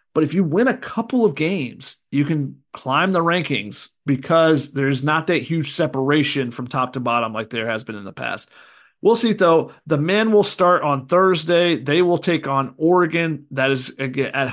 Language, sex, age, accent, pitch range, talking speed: English, male, 30-49, American, 140-185 Hz, 195 wpm